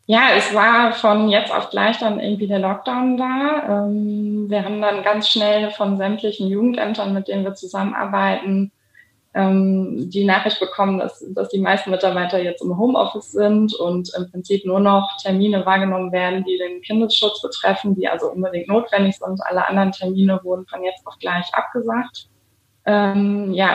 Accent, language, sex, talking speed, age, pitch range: German, German, female, 160 wpm, 20-39, 190-215 Hz